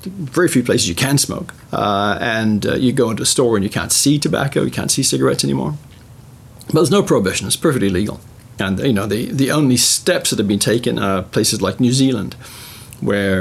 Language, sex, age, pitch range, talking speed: English, male, 40-59, 105-130 Hz, 215 wpm